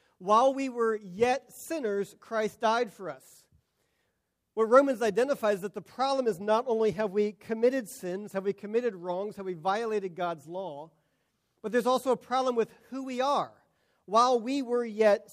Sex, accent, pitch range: male, American, 185-235 Hz